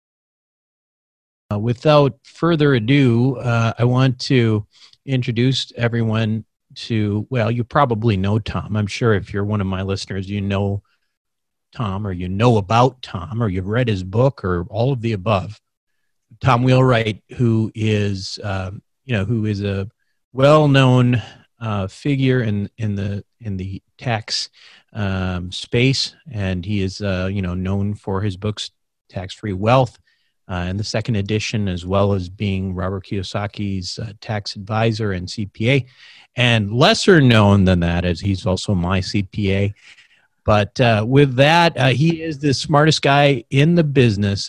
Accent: American